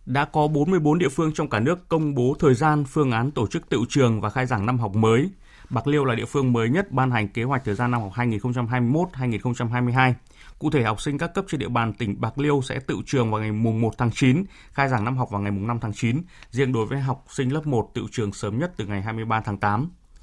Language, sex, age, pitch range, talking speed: Vietnamese, male, 20-39, 115-145 Hz, 260 wpm